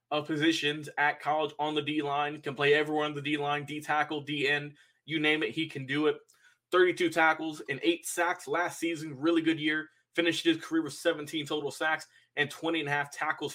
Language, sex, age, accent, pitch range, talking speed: English, male, 20-39, American, 145-175 Hz, 200 wpm